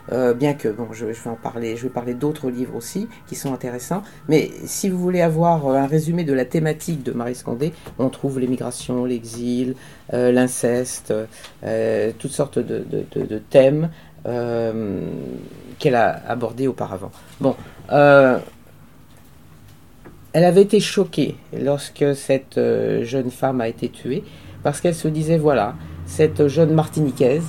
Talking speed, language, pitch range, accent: 155 wpm, French, 125-165 Hz, French